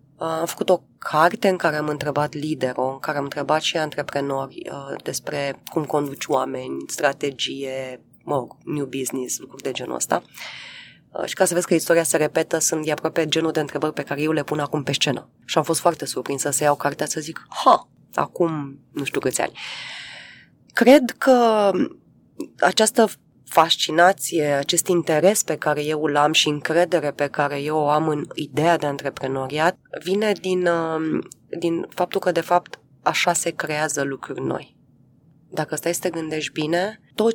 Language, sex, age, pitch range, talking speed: Romanian, female, 20-39, 145-175 Hz, 175 wpm